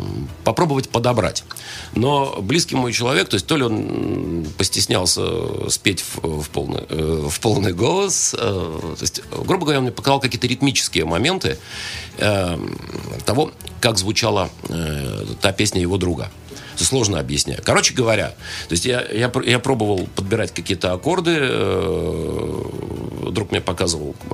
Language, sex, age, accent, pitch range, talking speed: Russian, male, 50-69, native, 90-120 Hz, 110 wpm